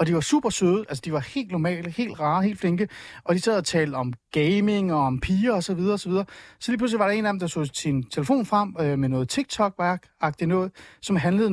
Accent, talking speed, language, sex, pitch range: native, 245 wpm, Danish, male, 165-220 Hz